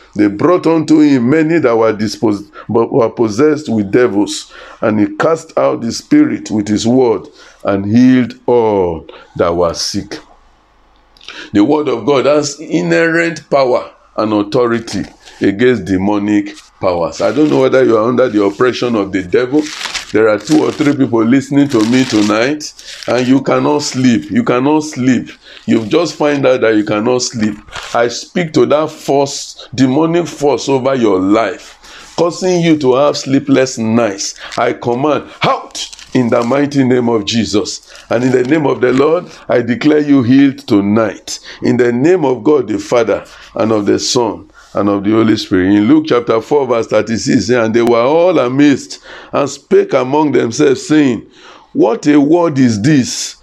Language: English